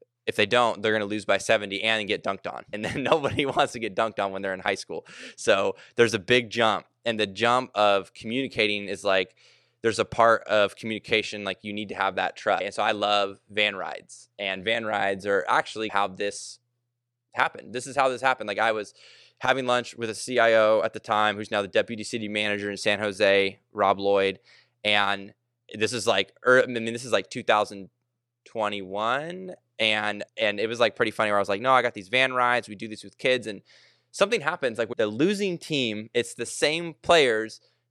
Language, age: English, 20-39